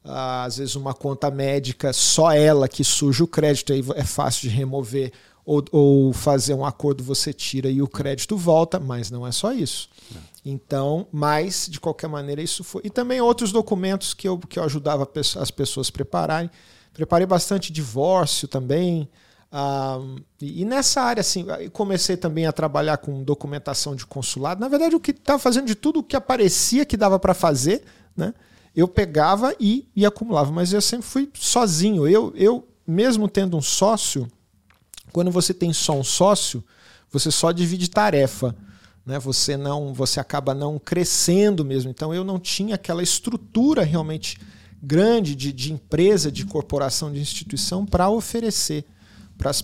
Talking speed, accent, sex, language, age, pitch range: 165 wpm, Brazilian, male, Portuguese, 50-69, 135-190 Hz